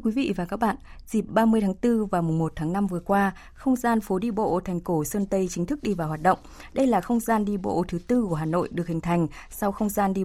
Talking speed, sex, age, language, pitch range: 285 wpm, female, 20-39, Vietnamese, 115-195 Hz